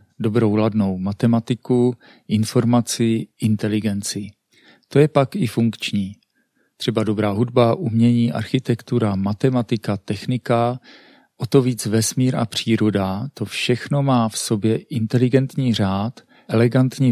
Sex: male